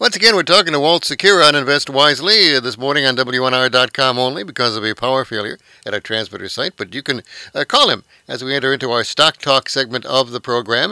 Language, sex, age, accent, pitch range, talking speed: English, male, 60-79, American, 120-150 Hz, 225 wpm